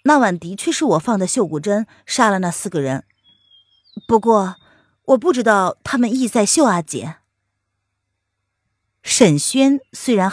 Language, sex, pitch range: Chinese, female, 150-250 Hz